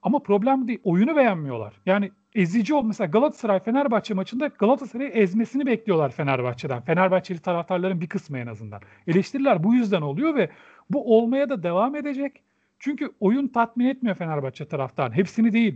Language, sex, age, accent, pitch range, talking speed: Turkish, male, 40-59, native, 170-240 Hz, 150 wpm